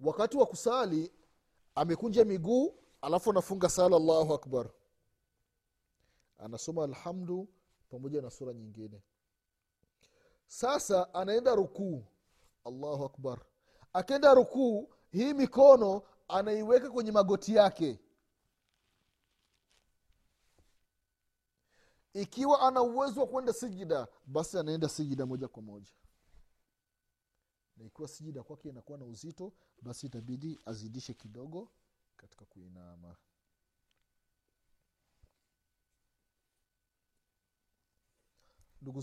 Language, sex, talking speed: Swahili, male, 80 wpm